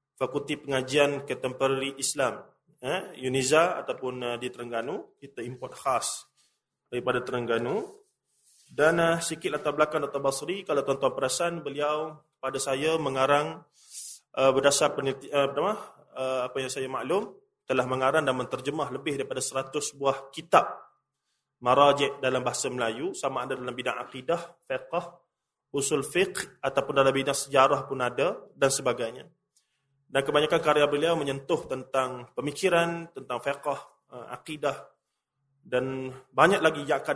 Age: 20-39